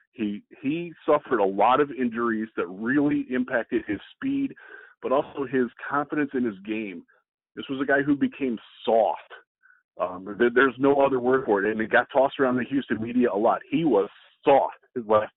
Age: 40-59